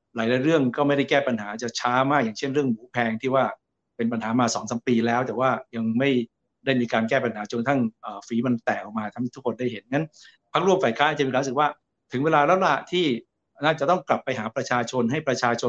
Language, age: Thai, 60-79